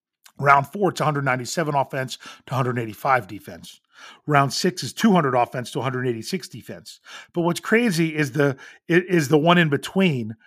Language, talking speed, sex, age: English, 145 wpm, male, 40-59